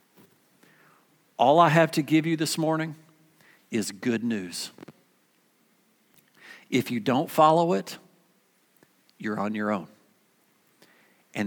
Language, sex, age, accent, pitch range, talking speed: English, male, 50-69, American, 105-140 Hz, 110 wpm